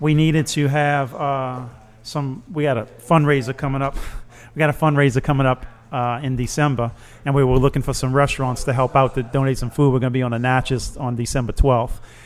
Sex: male